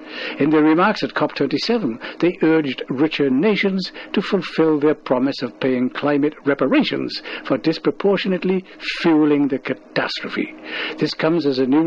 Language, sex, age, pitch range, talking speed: English, male, 60-79, 135-170 Hz, 135 wpm